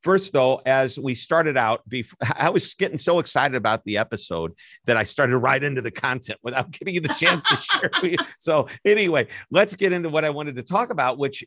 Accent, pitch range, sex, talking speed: American, 105-135 Hz, male, 210 wpm